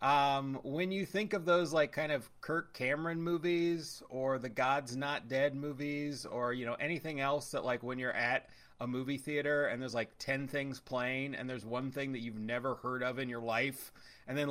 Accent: American